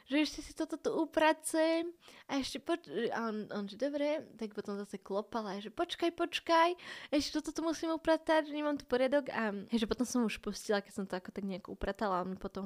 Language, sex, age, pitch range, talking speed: Slovak, female, 10-29, 195-230 Hz, 215 wpm